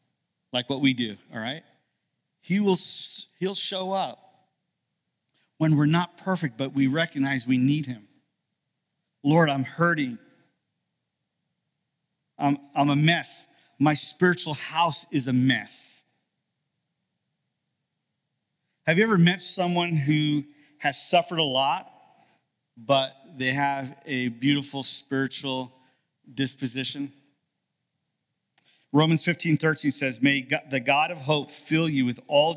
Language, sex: English, male